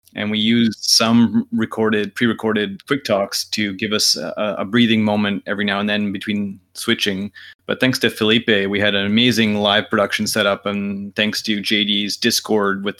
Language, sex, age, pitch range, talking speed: English, male, 30-49, 100-110 Hz, 175 wpm